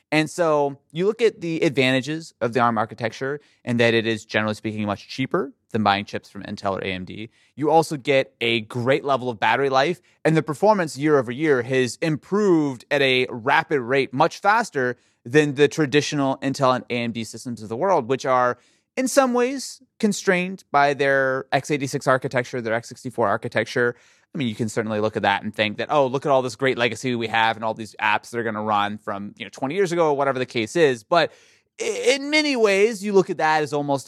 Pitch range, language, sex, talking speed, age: 115-155 Hz, English, male, 215 wpm, 30-49